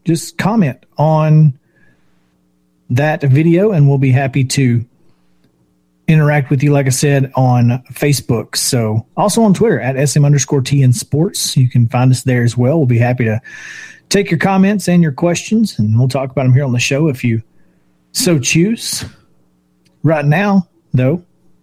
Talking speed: 165 wpm